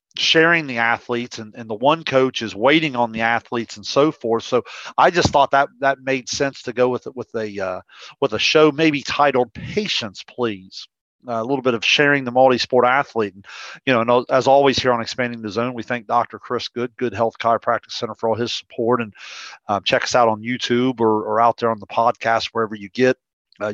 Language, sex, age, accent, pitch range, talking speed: English, male, 40-59, American, 115-130 Hz, 225 wpm